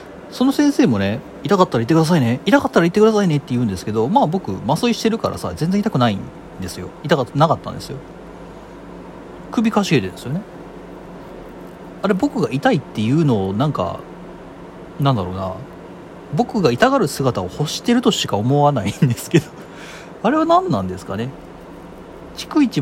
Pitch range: 110-175 Hz